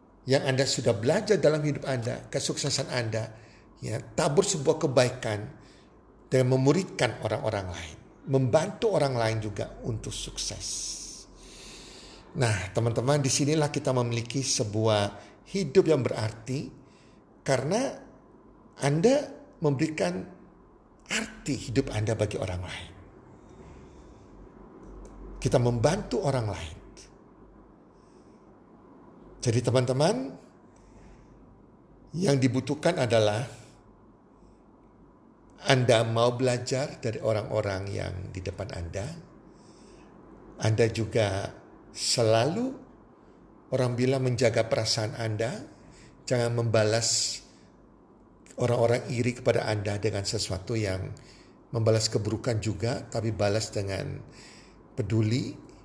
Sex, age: male, 50-69